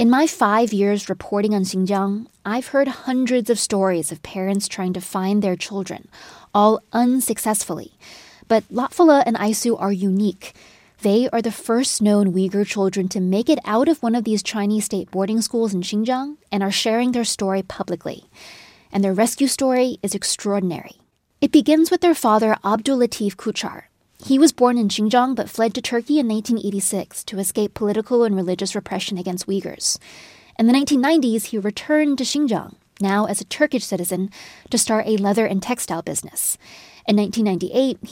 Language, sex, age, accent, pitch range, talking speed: English, female, 20-39, American, 195-245 Hz, 170 wpm